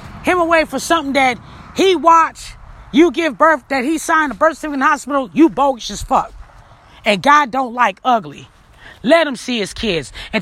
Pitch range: 230-310 Hz